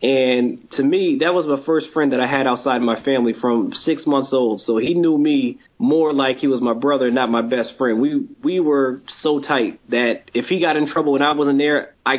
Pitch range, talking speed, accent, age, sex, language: 125-145 Hz, 235 wpm, American, 20-39, male, English